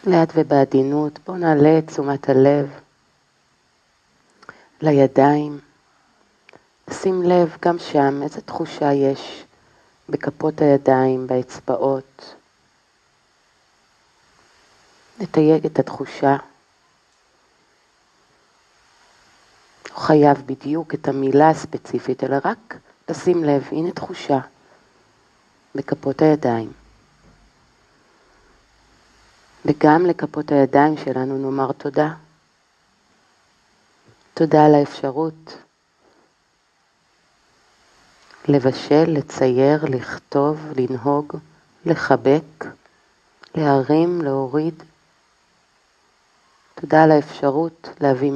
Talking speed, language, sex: 65 wpm, Hebrew, female